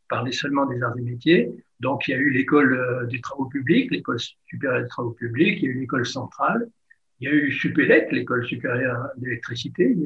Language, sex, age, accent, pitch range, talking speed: French, male, 60-79, French, 130-175 Hz, 225 wpm